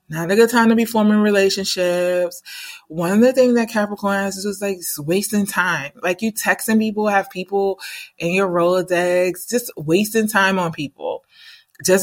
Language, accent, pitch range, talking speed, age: English, American, 165-205 Hz, 175 wpm, 30-49